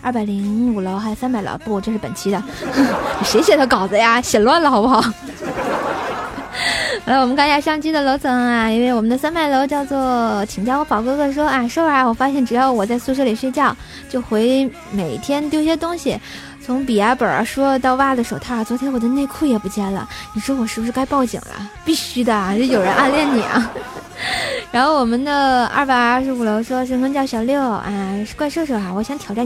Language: Chinese